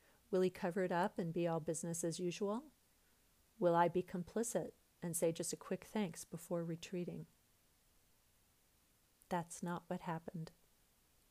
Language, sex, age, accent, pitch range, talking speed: English, female, 40-59, American, 170-190 Hz, 145 wpm